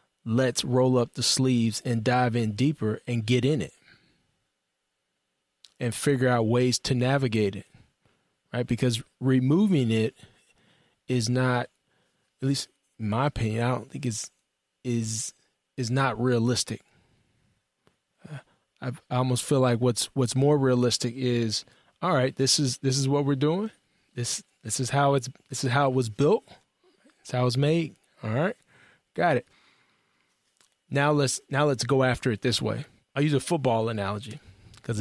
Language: English